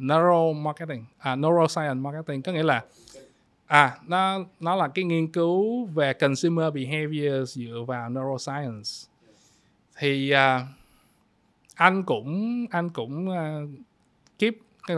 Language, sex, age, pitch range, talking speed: Vietnamese, male, 20-39, 140-180 Hz, 125 wpm